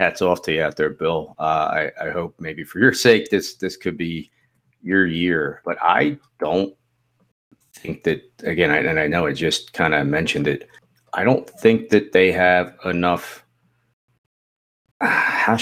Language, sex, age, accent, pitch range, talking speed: English, male, 40-59, American, 90-115 Hz, 175 wpm